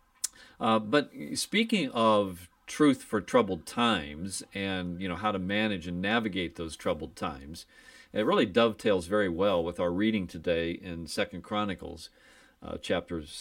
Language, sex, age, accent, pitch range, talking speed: English, male, 50-69, American, 90-115 Hz, 150 wpm